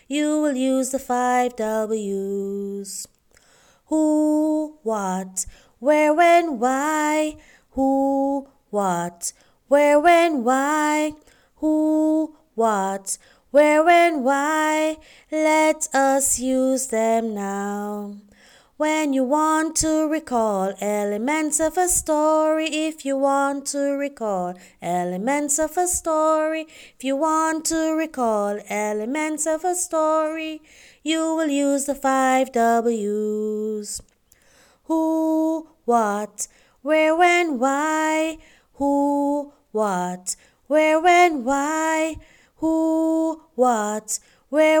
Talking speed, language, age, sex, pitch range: 95 wpm, English, 20-39, female, 215-310 Hz